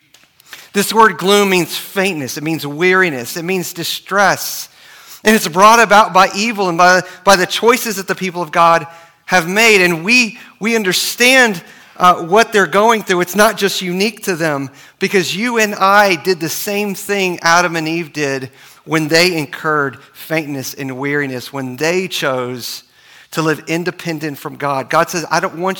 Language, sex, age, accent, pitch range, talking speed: English, male, 40-59, American, 155-195 Hz, 175 wpm